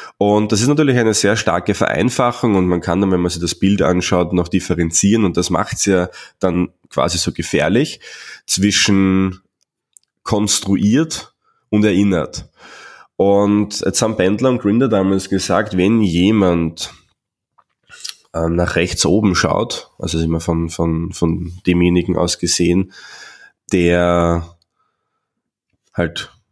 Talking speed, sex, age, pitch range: 130 wpm, male, 20-39, 85-105 Hz